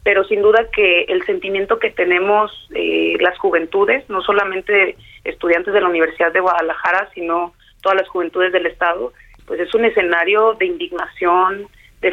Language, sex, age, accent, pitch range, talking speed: Spanish, female, 40-59, Mexican, 180-215 Hz, 160 wpm